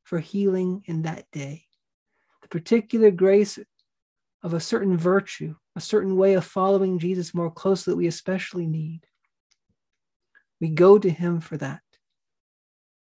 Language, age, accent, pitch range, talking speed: English, 40-59, American, 170-210 Hz, 135 wpm